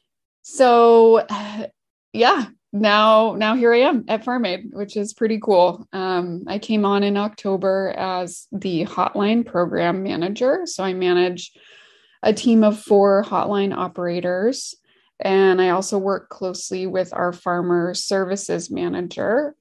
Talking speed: 130 wpm